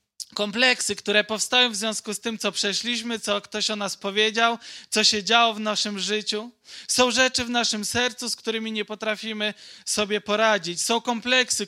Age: 20-39